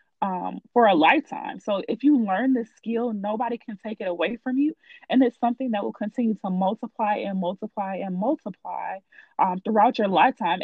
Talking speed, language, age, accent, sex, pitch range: 185 wpm, English, 20-39, American, female, 200-245 Hz